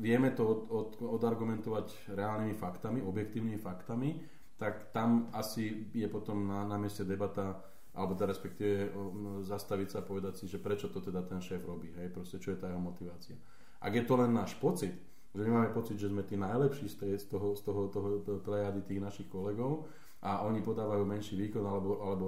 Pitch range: 95-110 Hz